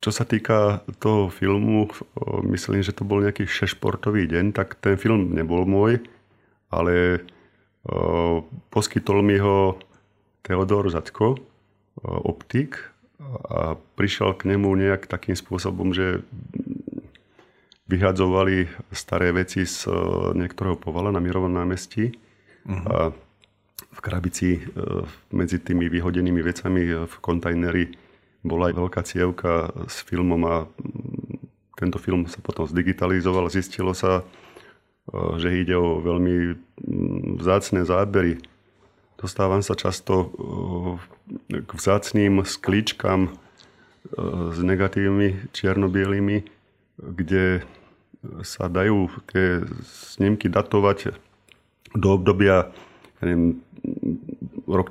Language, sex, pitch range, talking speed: Slovak, male, 90-100 Hz, 95 wpm